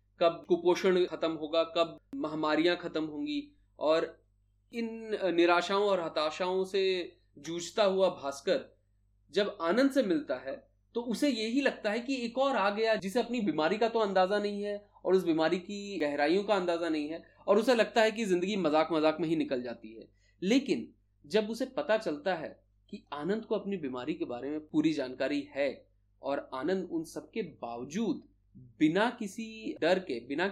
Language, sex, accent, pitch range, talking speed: Hindi, male, native, 155-220 Hz, 175 wpm